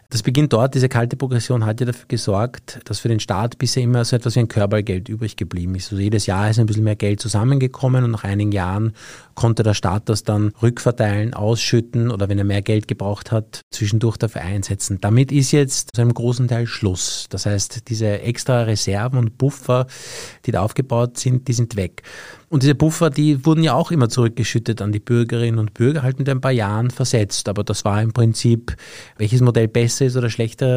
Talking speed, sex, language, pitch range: 210 wpm, male, German, 105-125 Hz